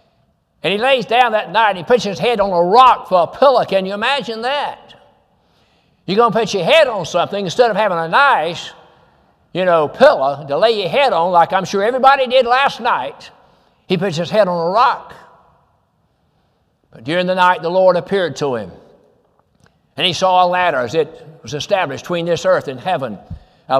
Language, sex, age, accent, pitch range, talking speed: English, male, 60-79, American, 155-195 Hz, 200 wpm